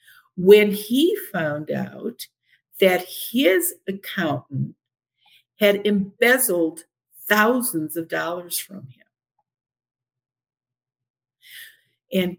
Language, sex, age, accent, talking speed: English, female, 50-69, American, 75 wpm